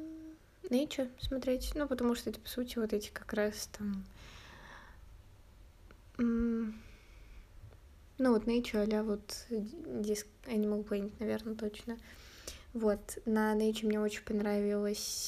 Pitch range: 210-230 Hz